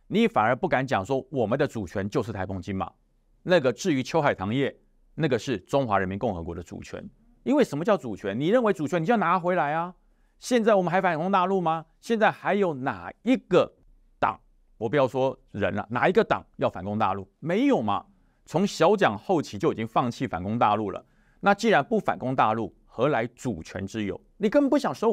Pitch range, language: 115-190 Hz, Chinese